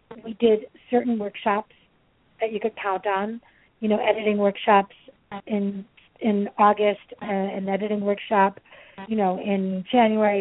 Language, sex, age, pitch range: English, female, 40-59, 195-220 Hz